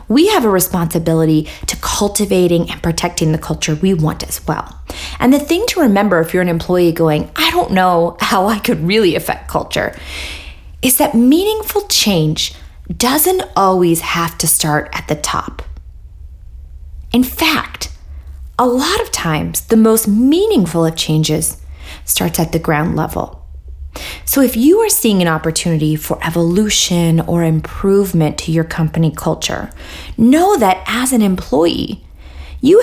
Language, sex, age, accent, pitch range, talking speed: English, female, 20-39, American, 155-225 Hz, 150 wpm